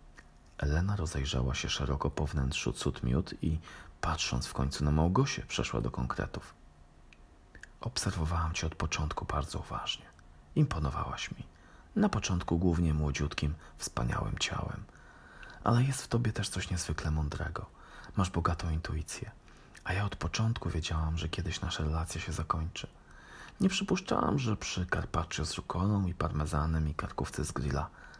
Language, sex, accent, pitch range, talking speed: Polish, male, native, 75-105 Hz, 140 wpm